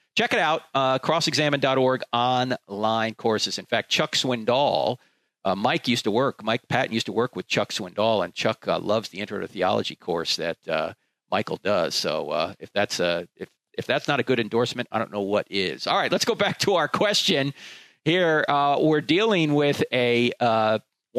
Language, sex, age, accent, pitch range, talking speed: English, male, 50-69, American, 120-170 Hz, 195 wpm